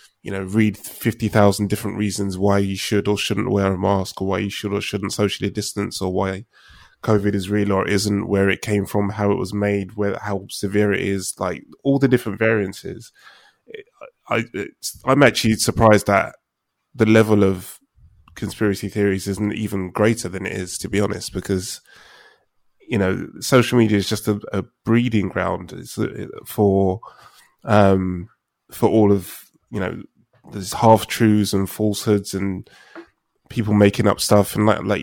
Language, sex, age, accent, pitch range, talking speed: English, male, 20-39, British, 95-110 Hz, 165 wpm